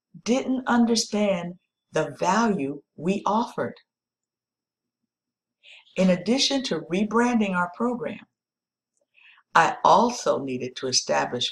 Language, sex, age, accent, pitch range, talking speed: English, female, 50-69, American, 140-200 Hz, 90 wpm